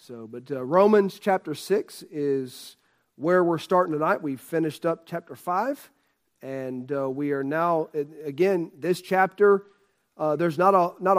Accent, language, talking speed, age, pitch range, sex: American, English, 155 wpm, 40-59, 150-180 Hz, male